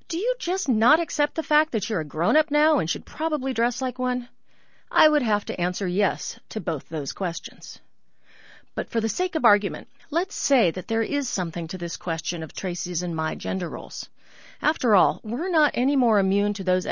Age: 40-59